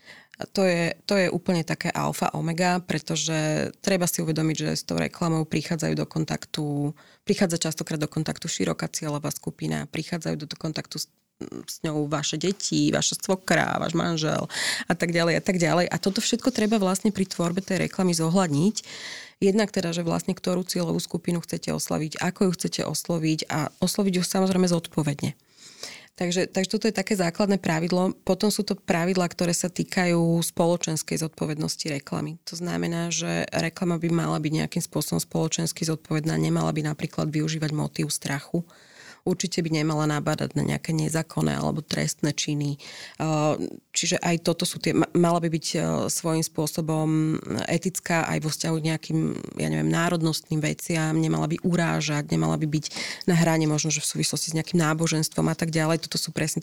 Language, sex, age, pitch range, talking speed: Slovak, female, 20-39, 155-180 Hz, 165 wpm